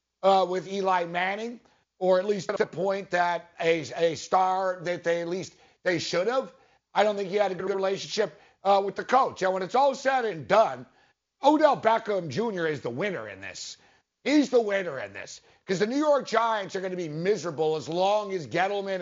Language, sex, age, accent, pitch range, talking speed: English, male, 60-79, American, 185-225 Hz, 210 wpm